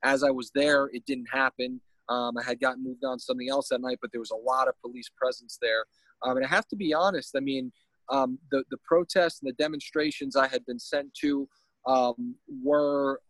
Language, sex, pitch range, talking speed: English, male, 125-150 Hz, 225 wpm